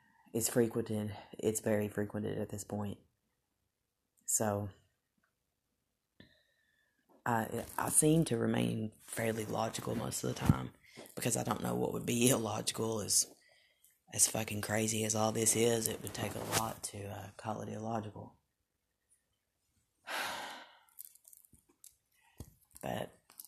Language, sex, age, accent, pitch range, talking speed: English, female, 30-49, American, 105-115 Hz, 125 wpm